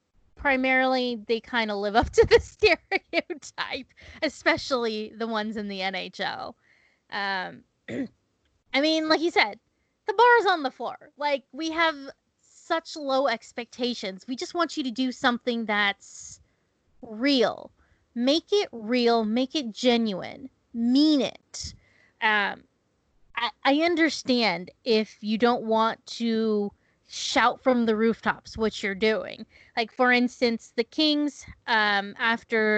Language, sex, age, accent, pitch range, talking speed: English, female, 20-39, American, 210-265 Hz, 135 wpm